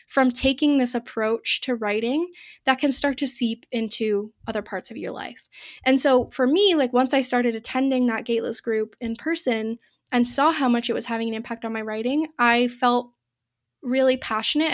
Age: 10-29